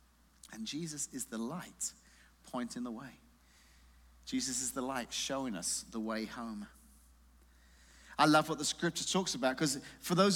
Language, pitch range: English, 140-195 Hz